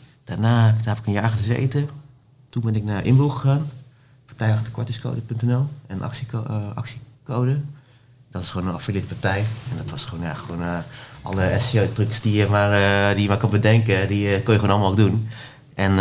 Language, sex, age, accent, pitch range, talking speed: Dutch, male, 30-49, Dutch, 95-125 Hz, 195 wpm